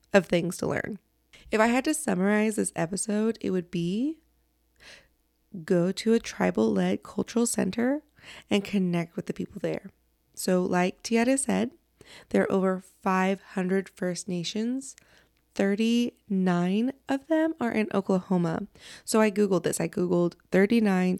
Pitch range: 180-225 Hz